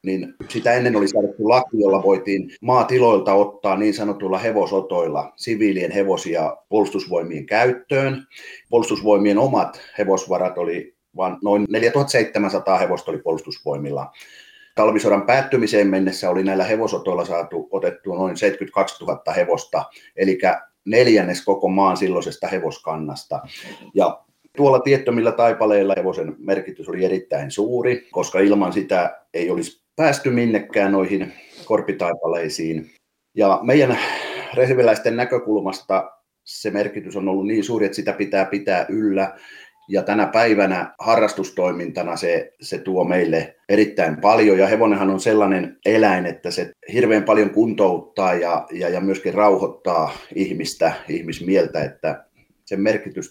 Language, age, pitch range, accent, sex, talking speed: Finnish, 30-49, 95-140 Hz, native, male, 120 wpm